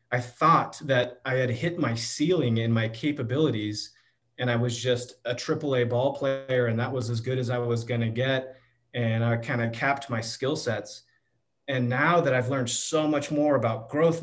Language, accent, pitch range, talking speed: English, American, 115-140 Hz, 205 wpm